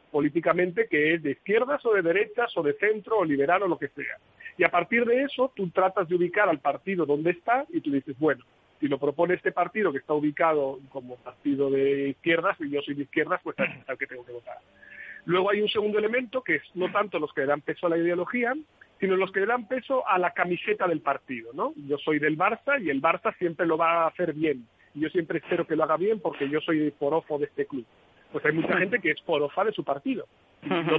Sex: male